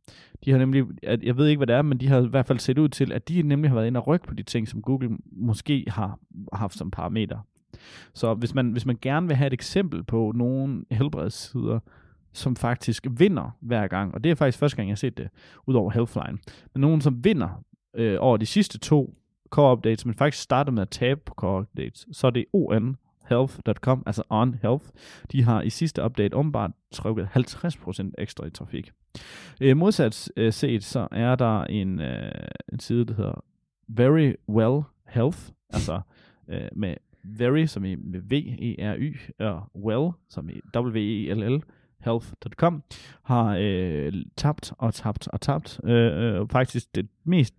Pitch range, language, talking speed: 105-135 Hz, Danish, 185 wpm